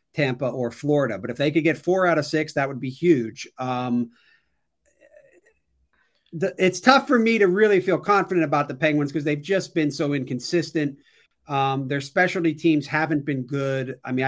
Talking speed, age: 180 wpm, 40-59